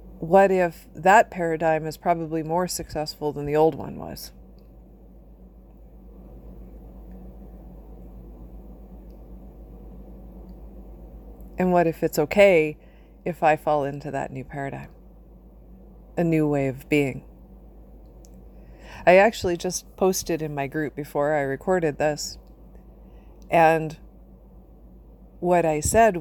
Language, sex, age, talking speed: English, female, 40-59, 105 wpm